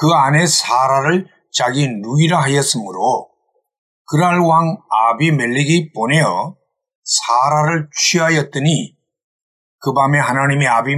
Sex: male